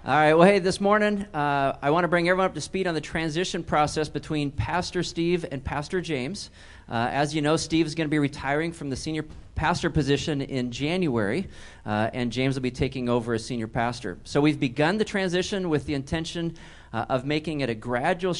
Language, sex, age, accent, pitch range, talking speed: English, male, 40-59, American, 130-165 Hz, 215 wpm